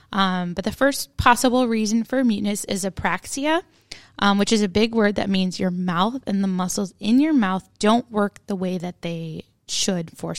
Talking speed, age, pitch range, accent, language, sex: 195 wpm, 10-29, 190-260 Hz, American, English, female